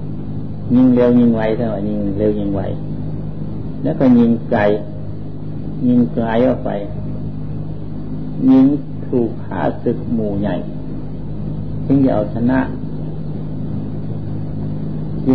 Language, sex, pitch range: Thai, male, 110-135 Hz